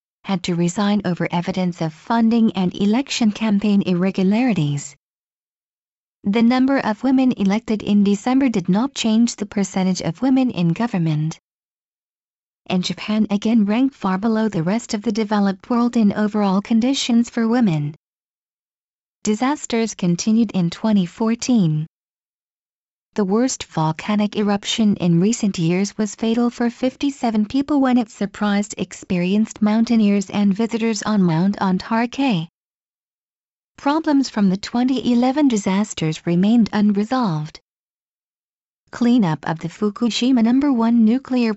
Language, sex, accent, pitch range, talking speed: English, female, American, 190-240 Hz, 120 wpm